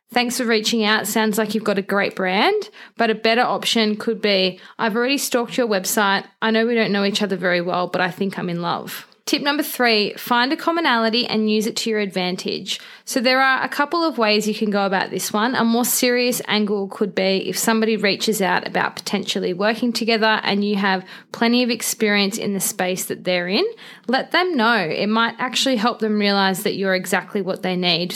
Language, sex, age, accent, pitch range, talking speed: English, female, 20-39, Australian, 200-240 Hz, 220 wpm